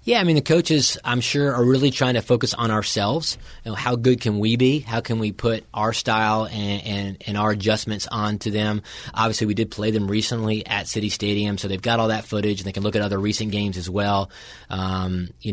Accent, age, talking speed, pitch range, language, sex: American, 30-49, 230 wpm, 100-110 Hz, English, male